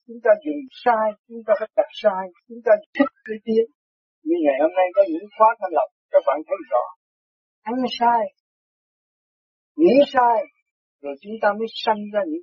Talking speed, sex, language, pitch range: 160 wpm, male, Vietnamese, 220-310 Hz